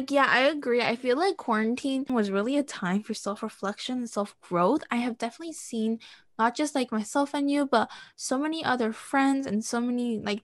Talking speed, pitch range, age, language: 200 wpm, 190-255 Hz, 10-29, English